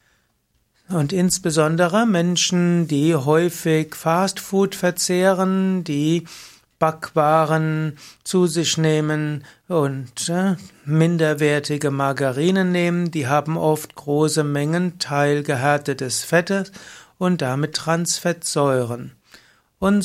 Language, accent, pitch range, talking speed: German, German, 145-175 Hz, 80 wpm